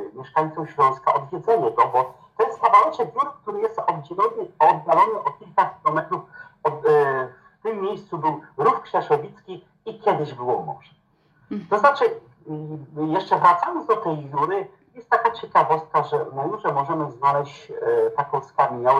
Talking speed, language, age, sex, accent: 150 wpm, Polish, 50-69, male, native